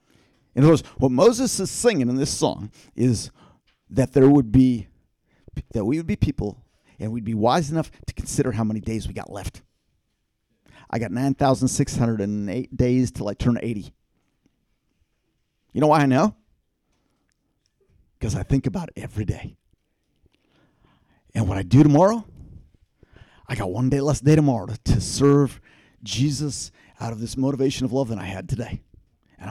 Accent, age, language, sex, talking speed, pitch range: American, 50-69, English, male, 160 wpm, 105-155 Hz